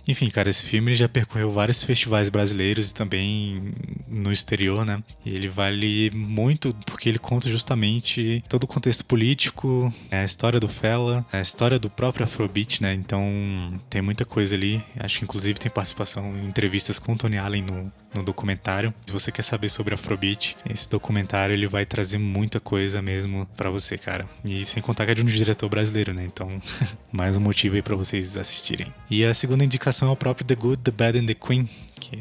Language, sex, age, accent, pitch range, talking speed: Portuguese, male, 20-39, Brazilian, 100-115 Hz, 200 wpm